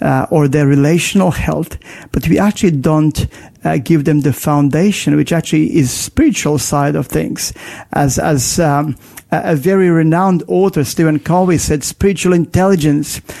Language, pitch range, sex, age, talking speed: English, 150-180 Hz, male, 50-69, 150 wpm